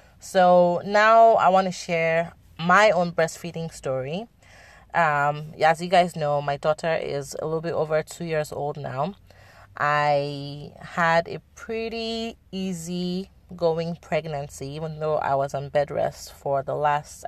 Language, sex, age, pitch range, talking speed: English, female, 30-49, 135-165 Hz, 145 wpm